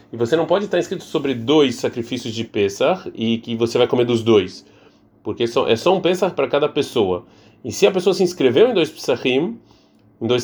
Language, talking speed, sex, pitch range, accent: Portuguese, 215 wpm, male, 115-160 Hz, Brazilian